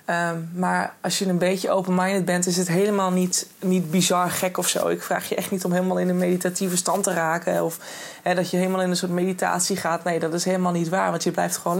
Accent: Dutch